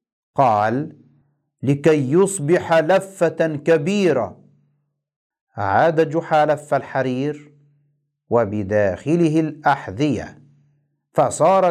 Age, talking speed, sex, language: 50-69, 60 wpm, male, Arabic